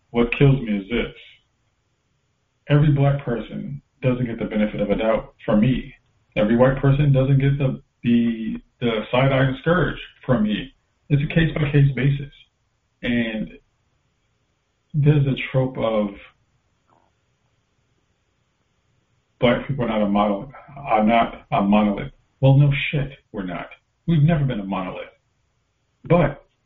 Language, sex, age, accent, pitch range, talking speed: English, male, 40-59, American, 115-140 Hz, 135 wpm